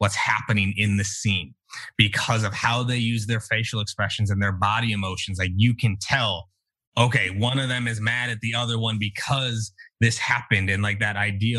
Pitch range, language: 105-130 Hz, English